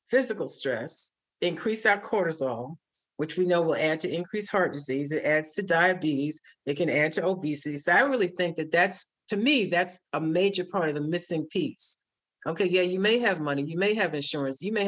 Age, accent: 50-69, American